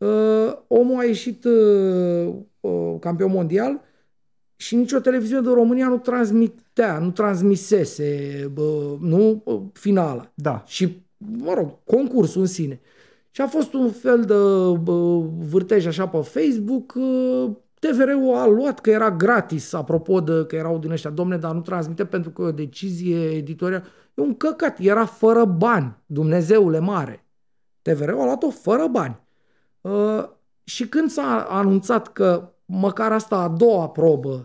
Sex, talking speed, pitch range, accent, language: male, 150 wpm, 160-215 Hz, native, Romanian